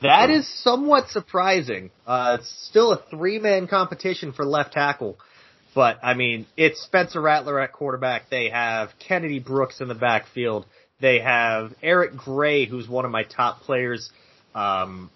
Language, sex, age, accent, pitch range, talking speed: English, male, 30-49, American, 120-180 Hz, 155 wpm